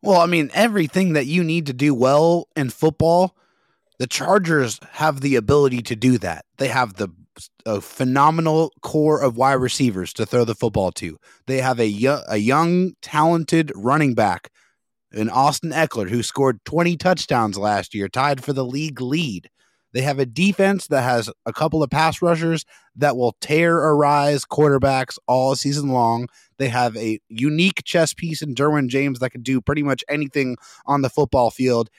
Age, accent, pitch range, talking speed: 30-49, American, 125-155 Hz, 175 wpm